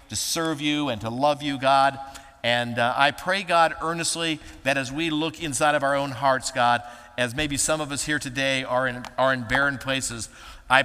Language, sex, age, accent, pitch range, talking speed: English, male, 50-69, American, 125-150 Hz, 210 wpm